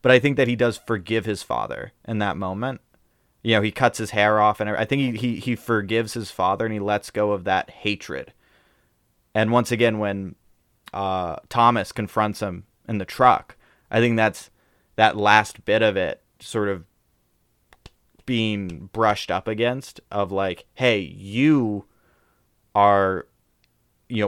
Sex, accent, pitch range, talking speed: male, American, 100-115 Hz, 165 wpm